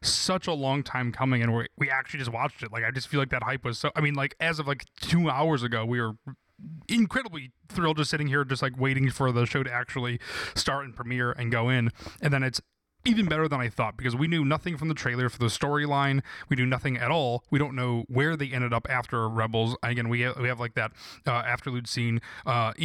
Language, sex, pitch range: English, male, 125-155 Hz